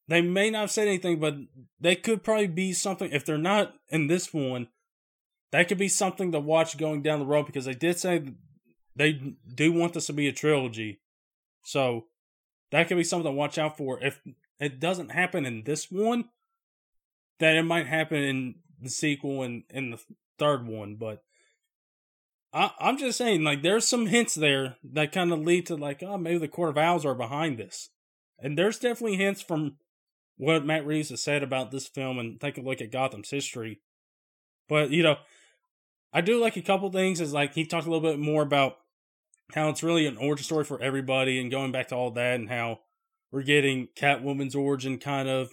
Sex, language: male, English